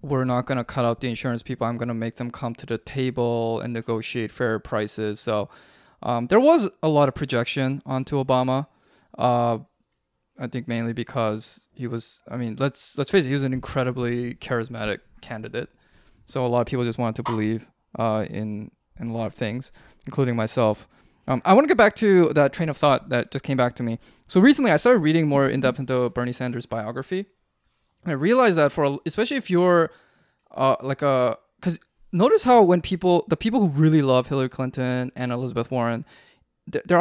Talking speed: 200 wpm